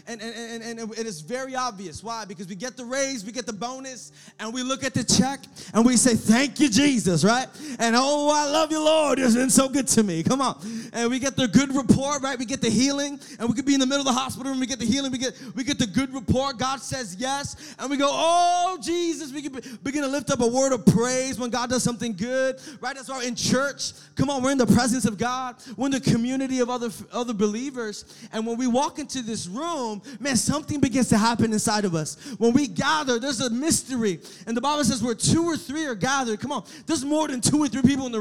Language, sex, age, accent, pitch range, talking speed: English, male, 20-39, American, 220-265 Hz, 255 wpm